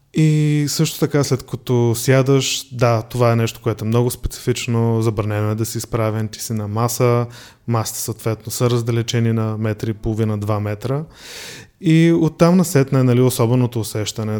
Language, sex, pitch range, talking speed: Bulgarian, male, 110-135 Hz, 170 wpm